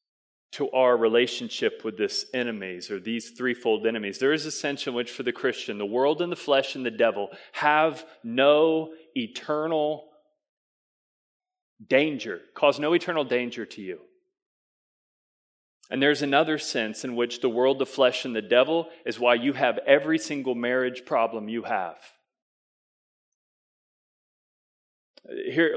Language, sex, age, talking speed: English, male, 30-49, 140 wpm